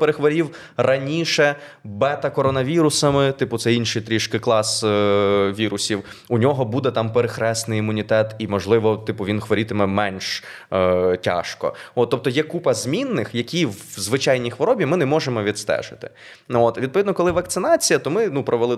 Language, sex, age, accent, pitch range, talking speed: Ukrainian, male, 20-39, native, 100-135 Hz, 145 wpm